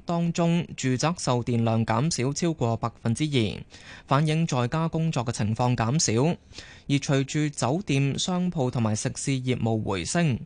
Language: Chinese